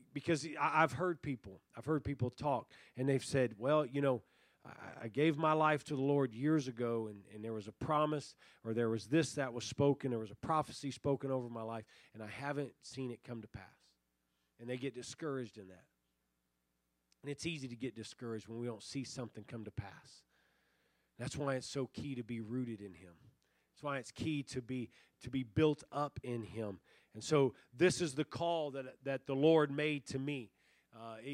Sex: male